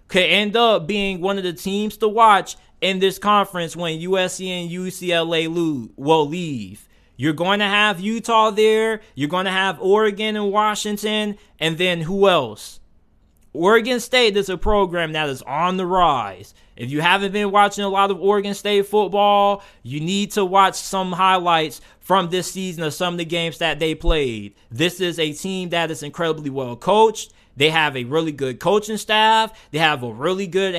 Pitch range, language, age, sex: 160-200 Hz, English, 20-39, male